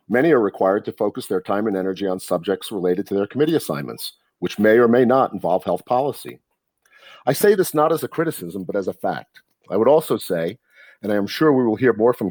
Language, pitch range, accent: English, 95-125 Hz, American